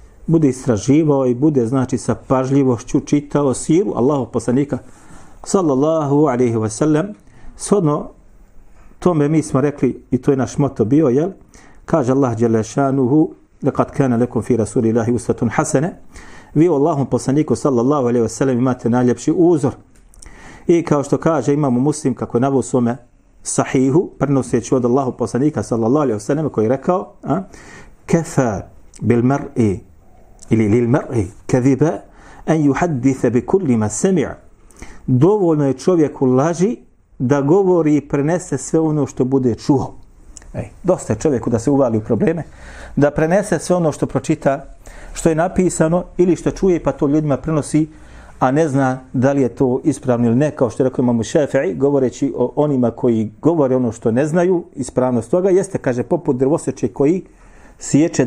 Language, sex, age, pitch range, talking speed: English, male, 40-59, 120-155 Hz, 145 wpm